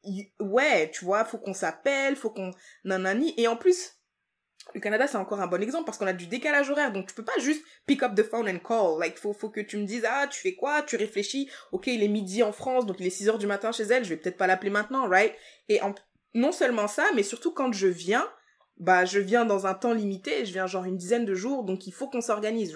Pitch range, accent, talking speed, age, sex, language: 195-255 Hz, French, 265 wpm, 20-39, female, French